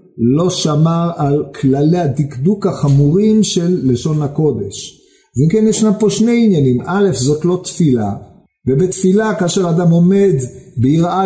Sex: male